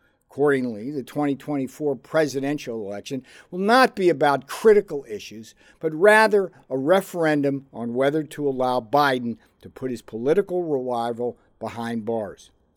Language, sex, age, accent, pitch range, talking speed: English, male, 60-79, American, 120-180 Hz, 125 wpm